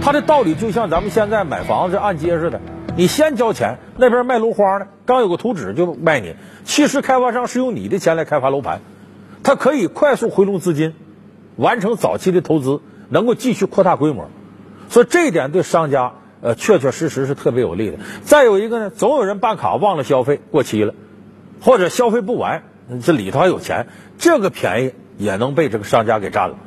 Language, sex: Chinese, male